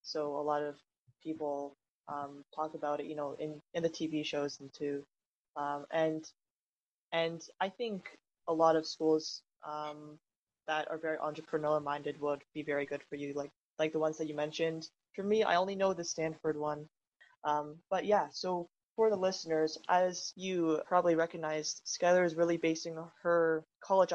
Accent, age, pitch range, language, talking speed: American, 20-39, 150-170 Hz, English, 175 wpm